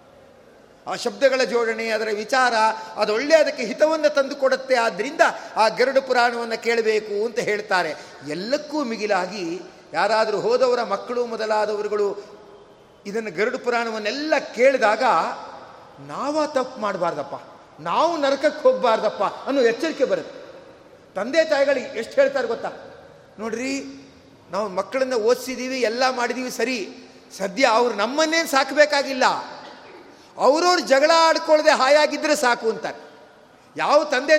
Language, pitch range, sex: Kannada, 230-295 Hz, male